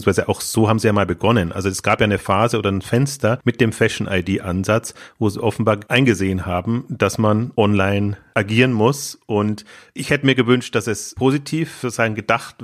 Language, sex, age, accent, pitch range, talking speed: German, male, 30-49, German, 105-125 Hz, 180 wpm